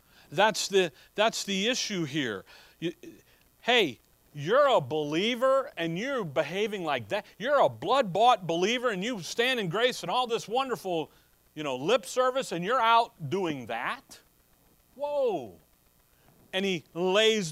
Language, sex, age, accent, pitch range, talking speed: English, male, 40-59, American, 155-220 Hz, 145 wpm